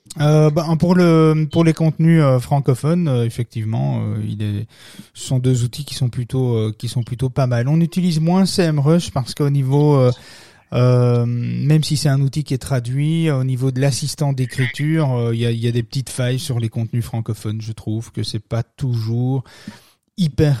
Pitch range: 120-150 Hz